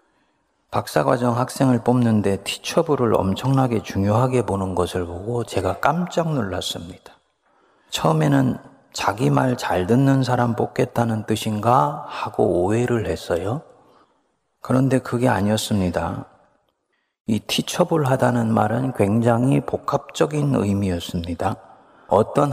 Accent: native